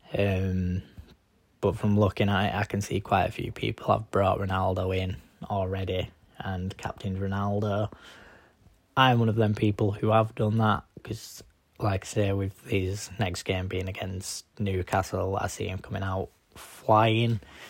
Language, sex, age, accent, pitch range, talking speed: English, male, 10-29, British, 95-110 Hz, 160 wpm